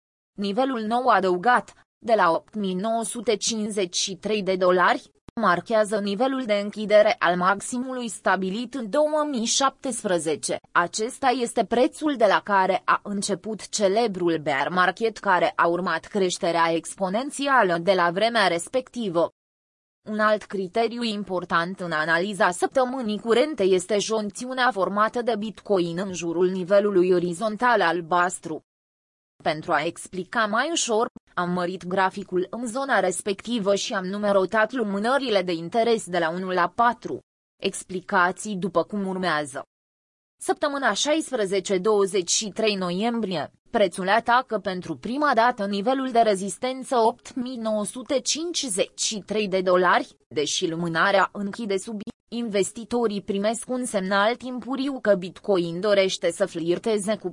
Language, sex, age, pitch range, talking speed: Romanian, female, 20-39, 180-235 Hz, 115 wpm